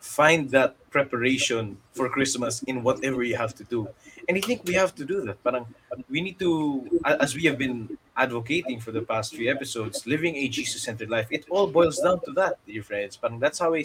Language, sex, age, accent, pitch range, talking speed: English, male, 20-39, Filipino, 110-140 Hz, 215 wpm